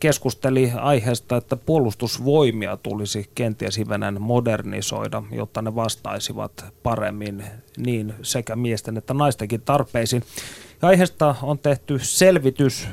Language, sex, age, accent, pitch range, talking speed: Finnish, male, 30-49, native, 115-145 Hz, 100 wpm